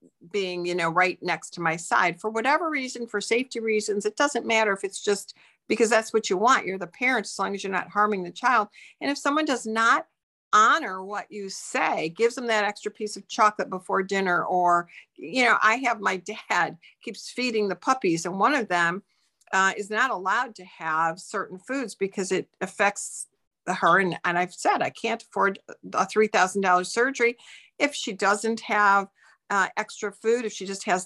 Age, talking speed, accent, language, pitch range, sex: 50-69, 195 wpm, American, English, 190-235 Hz, female